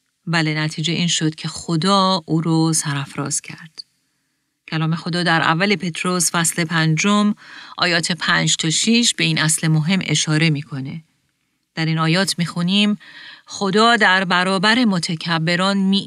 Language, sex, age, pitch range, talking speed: Persian, female, 40-59, 160-205 Hz, 140 wpm